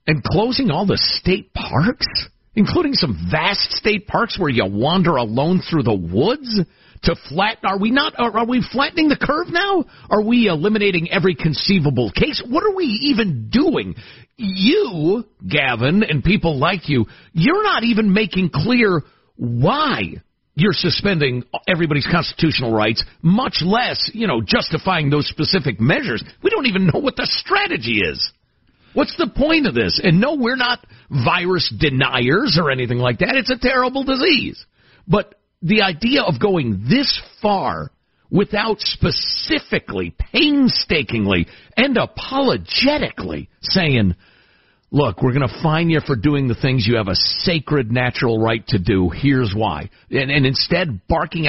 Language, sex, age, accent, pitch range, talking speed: English, male, 50-69, American, 135-220 Hz, 150 wpm